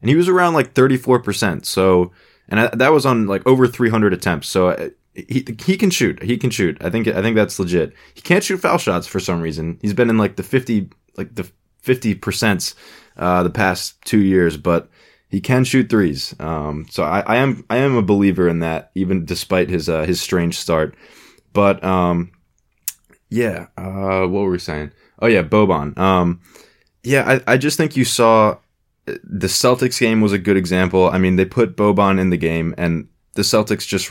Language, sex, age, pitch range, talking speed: English, male, 20-39, 90-115 Hz, 200 wpm